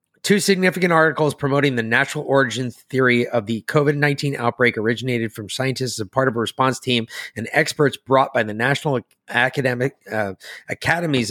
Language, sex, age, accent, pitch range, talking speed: English, male, 30-49, American, 125-160 Hz, 165 wpm